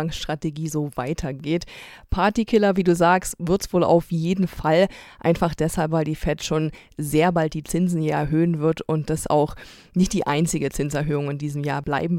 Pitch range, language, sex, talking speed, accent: 155-175 Hz, German, female, 180 wpm, German